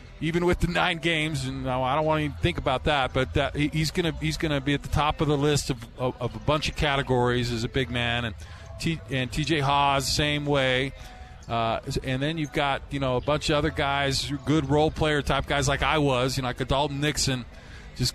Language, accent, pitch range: English, American, 130-155 Hz